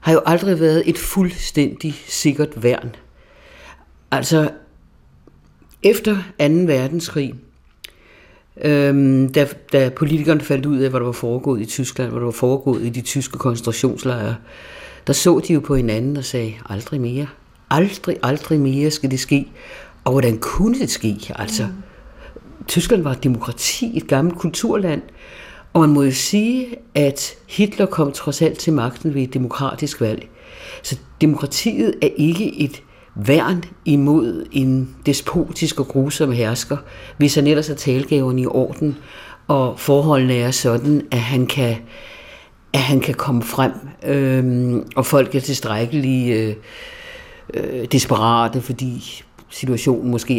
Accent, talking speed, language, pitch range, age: native, 140 wpm, Danish, 125-160 Hz, 60-79